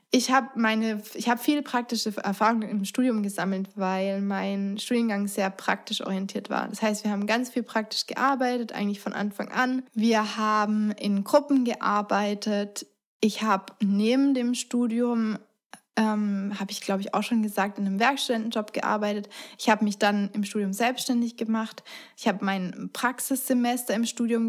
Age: 20-39